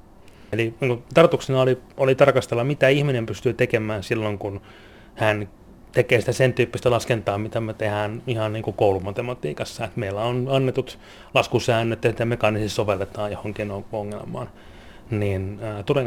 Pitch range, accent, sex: 105-125 Hz, native, male